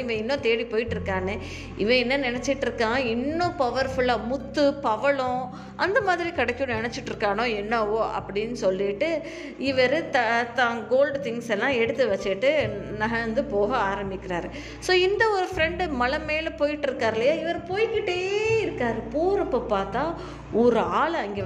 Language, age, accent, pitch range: Tamil, 20-39, native, 220-285 Hz